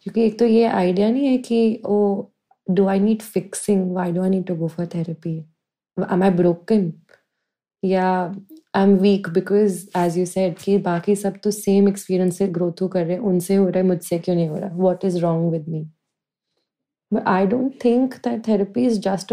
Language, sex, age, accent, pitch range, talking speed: Hindi, female, 20-39, native, 190-230 Hz, 200 wpm